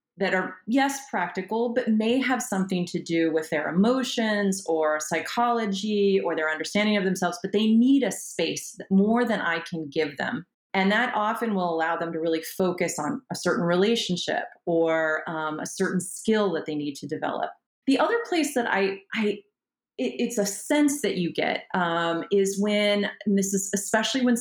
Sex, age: female, 30-49